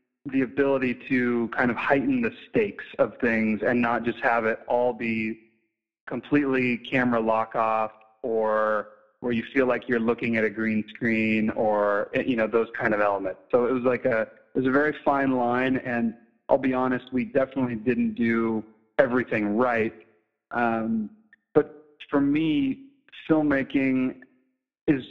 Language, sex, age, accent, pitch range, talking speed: English, male, 30-49, American, 110-130 Hz, 160 wpm